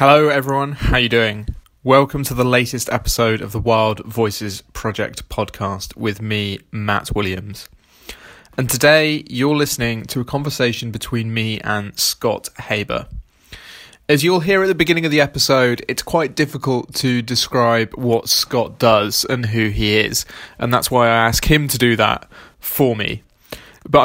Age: 20-39